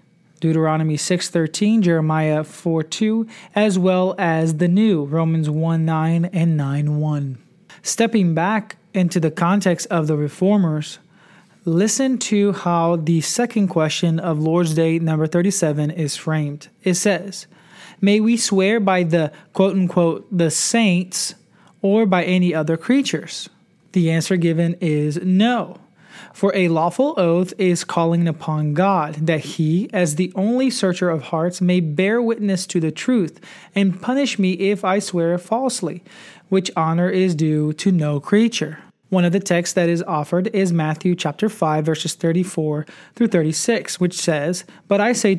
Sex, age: male, 20-39